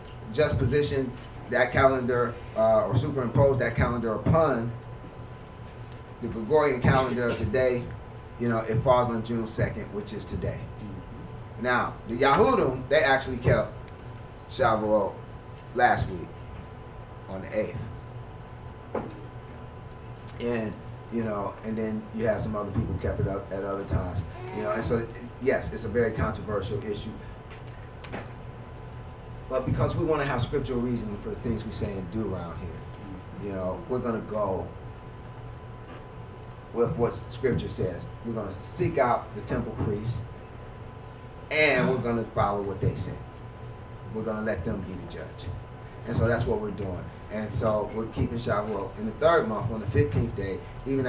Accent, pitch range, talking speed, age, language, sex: American, 105-125 Hz, 155 wpm, 30-49, English, male